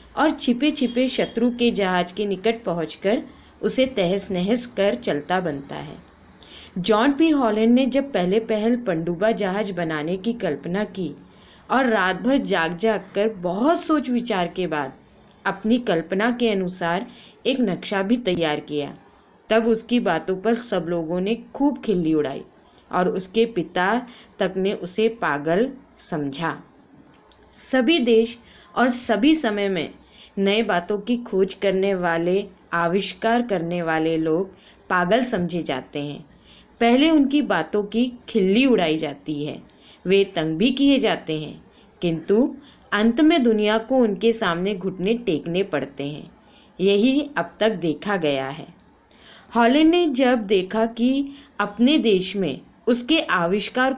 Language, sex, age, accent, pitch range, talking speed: English, female, 20-39, Indian, 180-240 Hz, 125 wpm